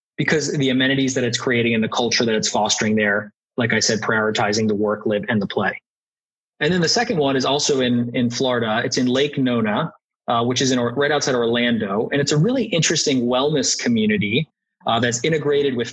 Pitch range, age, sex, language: 115-145 Hz, 20-39, male, English